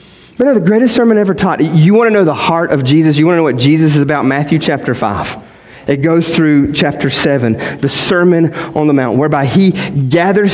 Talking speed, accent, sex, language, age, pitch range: 220 wpm, American, male, English, 30-49, 150-205 Hz